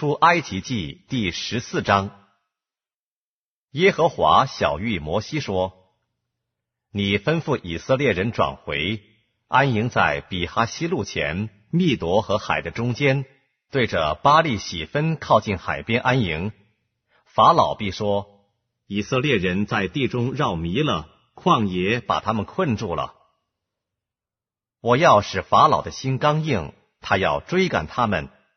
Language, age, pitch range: Korean, 50-69, 95-125 Hz